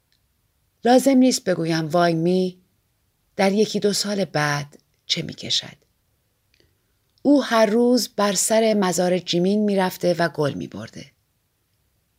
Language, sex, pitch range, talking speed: Persian, female, 170-220 Hz, 125 wpm